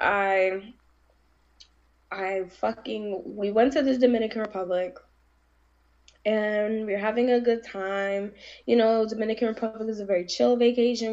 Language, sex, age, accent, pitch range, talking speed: English, female, 10-29, American, 175-235 Hz, 130 wpm